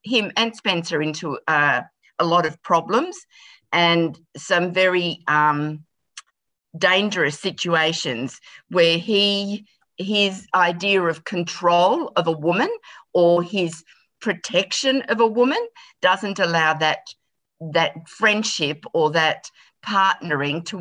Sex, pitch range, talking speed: female, 165-220 Hz, 110 wpm